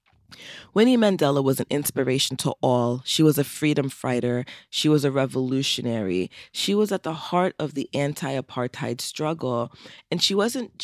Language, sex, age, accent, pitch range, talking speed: English, female, 20-39, American, 125-160 Hz, 155 wpm